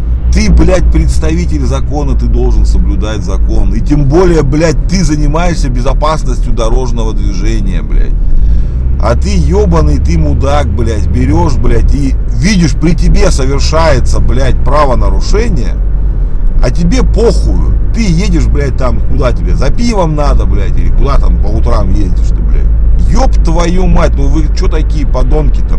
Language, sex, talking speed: Russian, male, 145 wpm